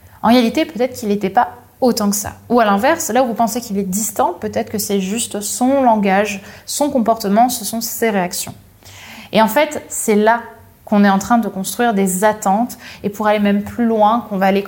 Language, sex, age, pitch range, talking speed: French, female, 20-39, 200-260 Hz, 215 wpm